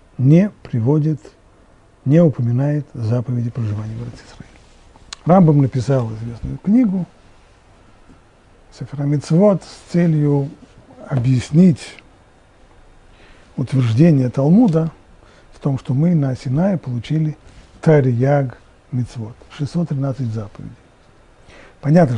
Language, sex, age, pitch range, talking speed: Russian, male, 40-59, 110-145 Hz, 80 wpm